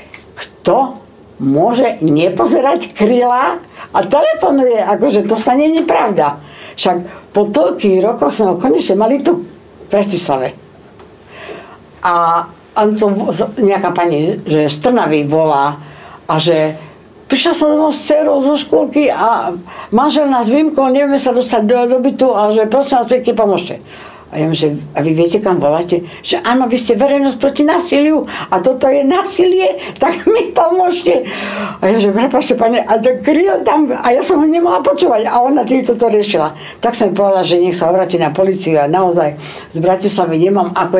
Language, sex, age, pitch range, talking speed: Slovak, female, 60-79, 170-255 Hz, 160 wpm